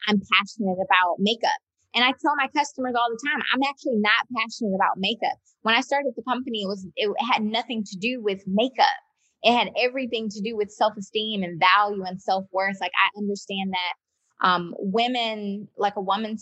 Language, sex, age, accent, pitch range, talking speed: English, female, 20-39, American, 195-230 Hz, 190 wpm